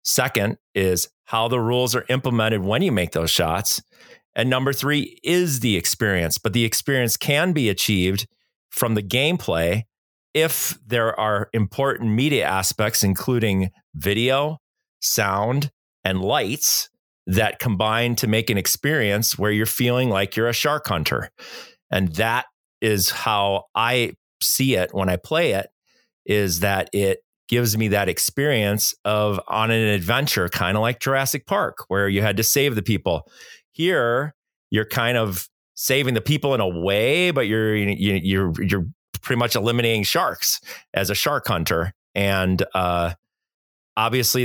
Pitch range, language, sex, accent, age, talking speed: 100-125 Hz, English, male, American, 40-59, 150 wpm